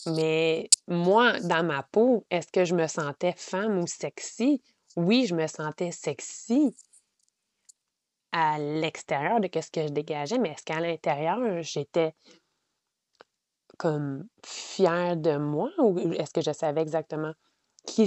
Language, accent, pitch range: French, Canadian, 175-230 Hz